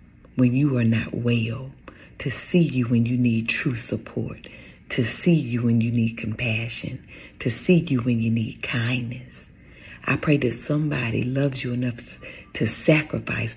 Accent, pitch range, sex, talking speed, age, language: American, 115-140 Hz, female, 160 wpm, 40-59, English